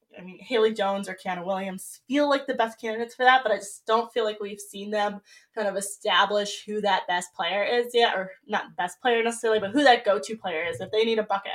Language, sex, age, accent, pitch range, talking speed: English, female, 10-29, American, 190-225 Hz, 250 wpm